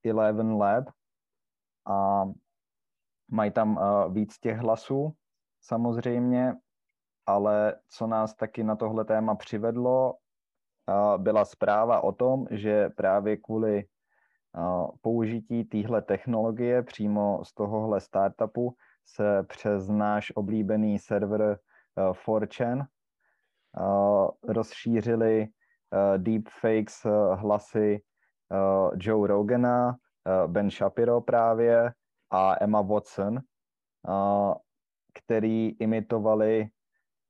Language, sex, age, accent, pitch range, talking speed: Czech, male, 20-39, native, 105-115 Hz, 90 wpm